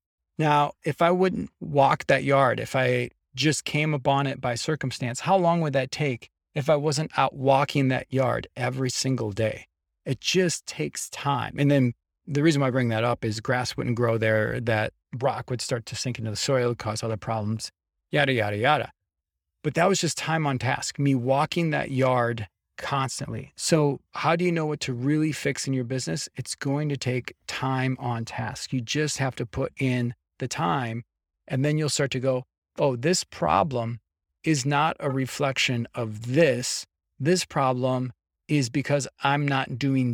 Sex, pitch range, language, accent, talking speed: male, 120-145 Hz, English, American, 185 wpm